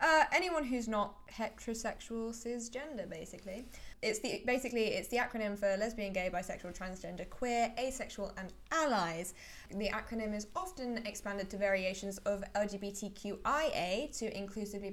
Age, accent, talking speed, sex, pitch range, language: 10-29, British, 135 wpm, female, 195-235 Hz, English